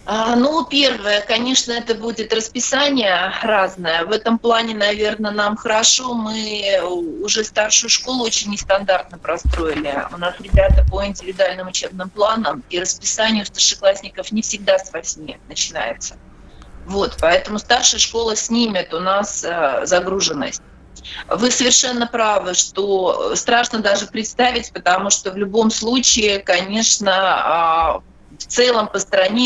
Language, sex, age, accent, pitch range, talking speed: Russian, female, 30-49, native, 185-230 Hz, 125 wpm